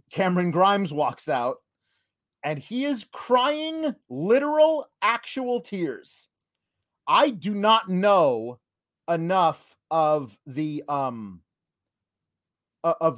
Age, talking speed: 40-59, 90 wpm